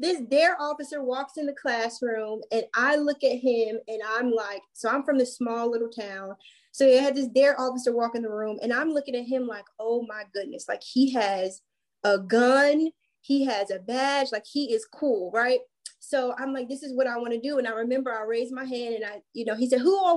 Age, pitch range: 20-39, 235-295 Hz